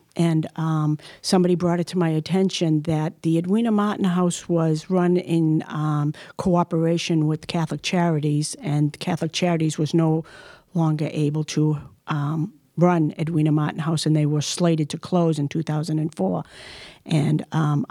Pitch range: 155-170 Hz